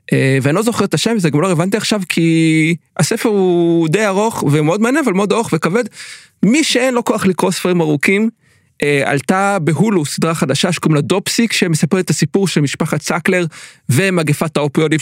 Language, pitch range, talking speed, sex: Hebrew, 150-190 Hz, 175 wpm, male